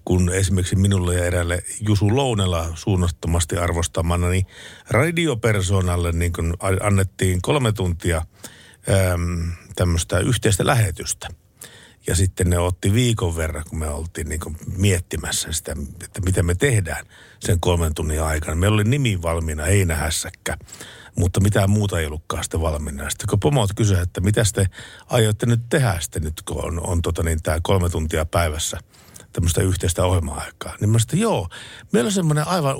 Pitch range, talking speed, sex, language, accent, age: 85-115 Hz, 155 wpm, male, Finnish, native, 60-79